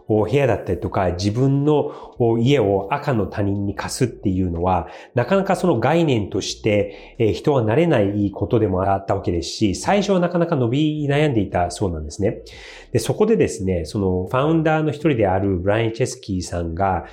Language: Japanese